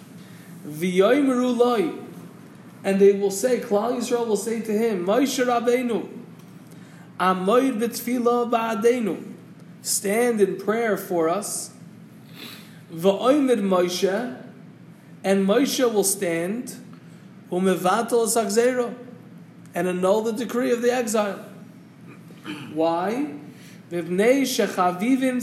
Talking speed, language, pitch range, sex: 95 wpm, English, 180-240 Hz, male